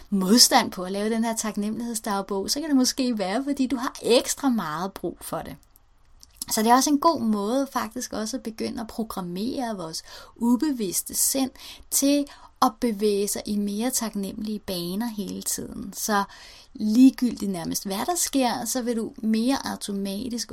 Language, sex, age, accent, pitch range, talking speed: Danish, female, 30-49, native, 195-255 Hz, 165 wpm